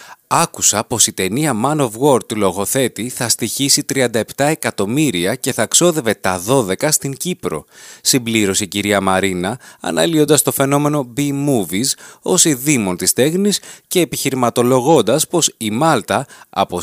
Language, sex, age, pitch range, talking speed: Greek, male, 30-49, 105-150 Hz, 140 wpm